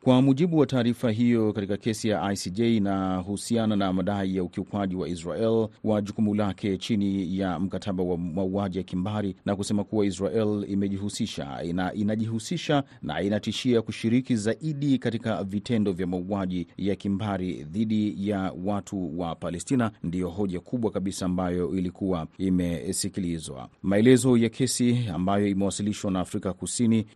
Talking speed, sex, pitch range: 140 wpm, male, 95-115 Hz